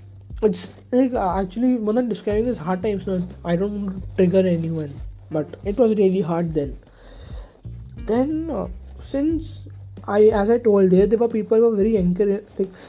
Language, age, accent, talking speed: English, 20-39, Indian, 175 wpm